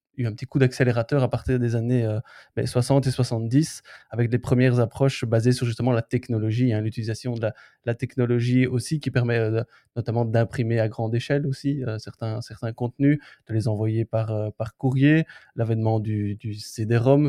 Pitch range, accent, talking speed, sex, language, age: 110-130 Hz, French, 190 wpm, male, French, 20-39